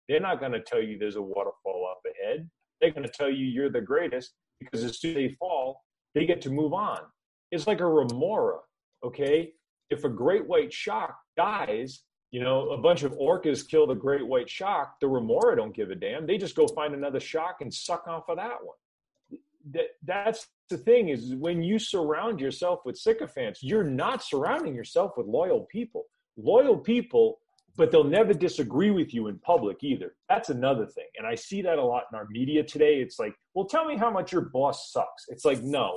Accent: American